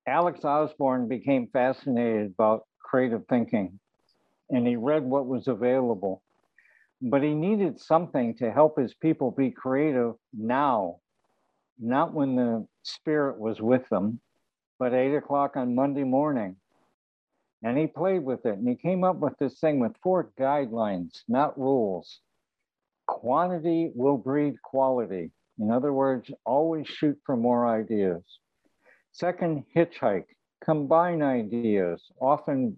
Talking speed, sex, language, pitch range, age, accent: 130 wpm, male, English, 120-155 Hz, 60-79, American